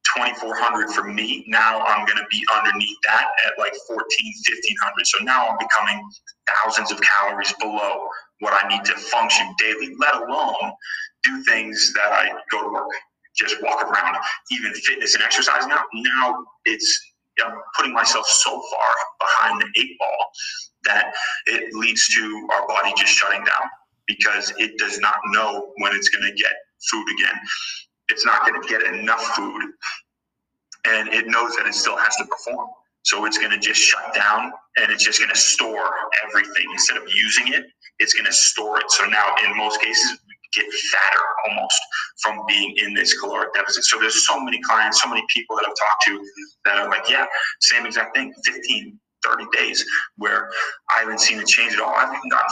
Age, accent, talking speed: 30-49, American, 185 wpm